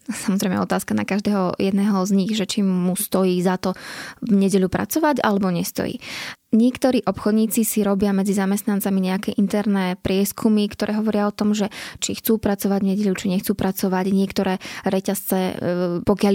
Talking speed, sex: 160 wpm, female